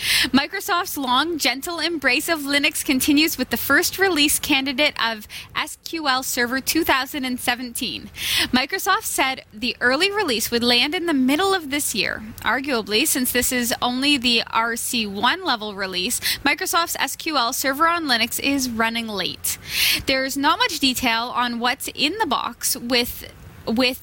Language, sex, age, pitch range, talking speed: English, female, 10-29, 235-300 Hz, 140 wpm